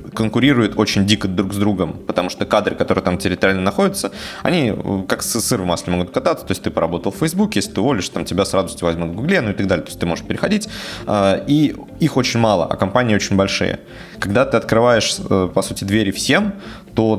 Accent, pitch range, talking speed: native, 90-110 Hz, 215 wpm